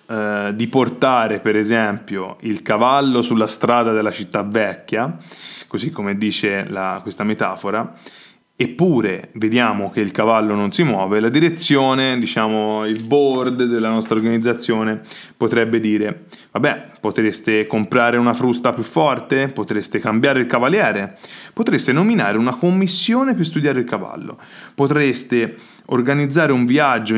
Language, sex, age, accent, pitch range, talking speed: Italian, male, 20-39, native, 110-175 Hz, 125 wpm